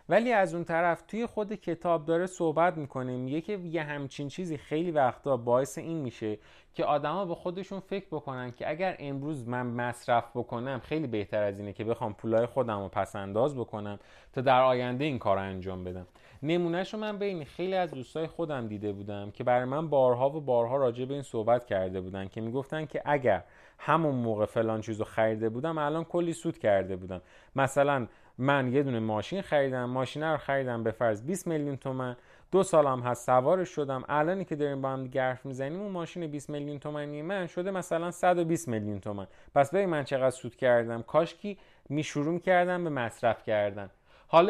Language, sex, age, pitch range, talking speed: Persian, male, 30-49, 120-165 Hz, 185 wpm